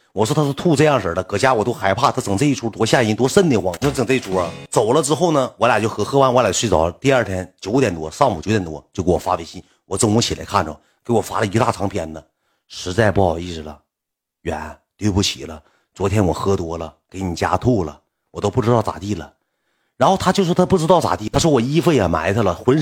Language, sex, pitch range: Chinese, male, 95-140 Hz